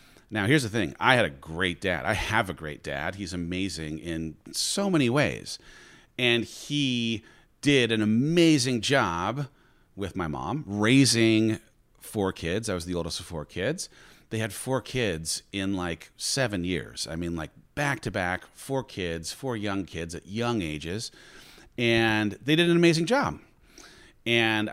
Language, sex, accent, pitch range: English, male, American, 90-125 Hz